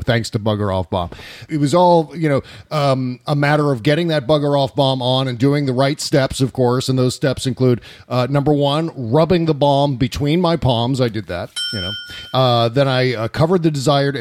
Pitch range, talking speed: 115-150 Hz, 220 wpm